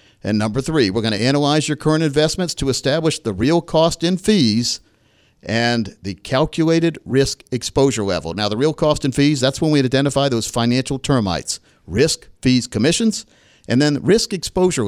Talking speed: 175 wpm